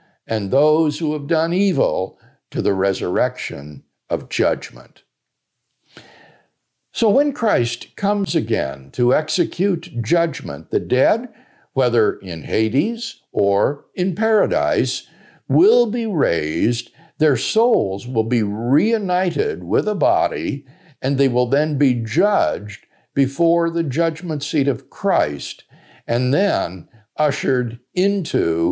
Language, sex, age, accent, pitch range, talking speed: English, male, 60-79, American, 125-195 Hz, 115 wpm